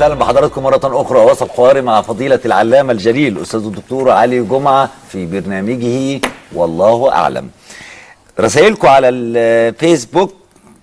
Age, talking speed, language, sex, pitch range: 50-69, 115 wpm, Arabic, male, 110-150 Hz